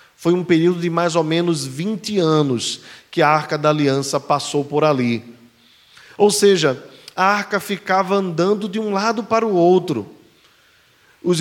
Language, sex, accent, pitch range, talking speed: Portuguese, male, Brazilian, 135-185 Hz, 160 wpm